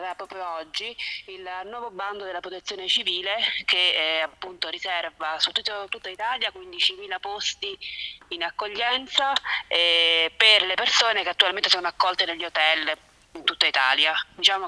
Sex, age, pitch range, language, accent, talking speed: female, 30-49, 170-220 Hz, Italian, native, 140 wpm